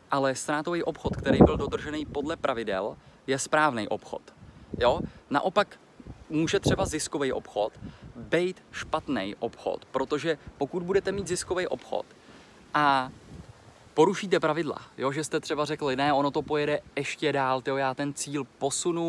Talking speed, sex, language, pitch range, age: 140 wpm, male, Czech, 130-155 Hz, 20-39